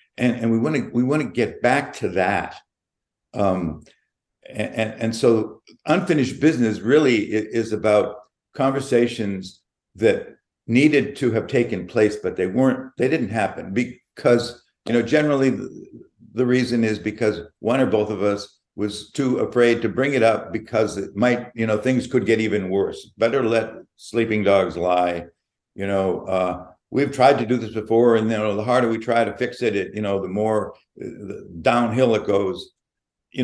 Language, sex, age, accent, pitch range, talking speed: English, male, 60-79, American, 105-120 Hz, 180 wpm